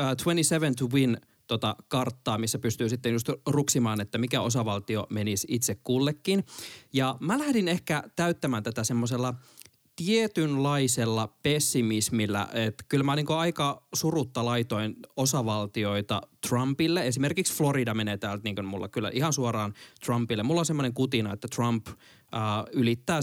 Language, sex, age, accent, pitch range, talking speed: Finnish, male, 20-39, native, 115-150 Hz, 125 wpm